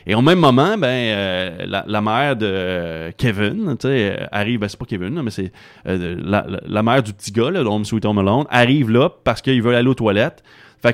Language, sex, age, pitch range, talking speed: French, male, 30-49, 105-140 Hz, 225 wpm